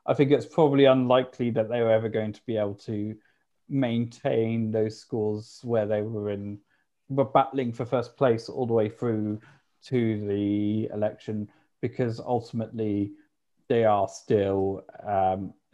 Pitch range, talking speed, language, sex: 115-150 Hz, 150 wpm, English, male